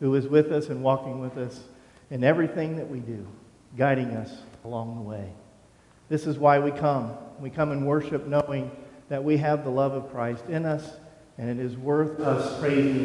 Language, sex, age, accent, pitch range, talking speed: English, male, 50-69, American, 125-150 Hz, 200 wpm